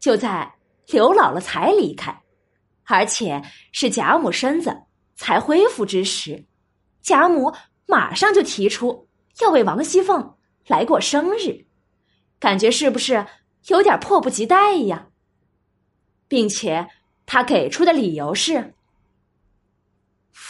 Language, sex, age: Chinese, female, 20-39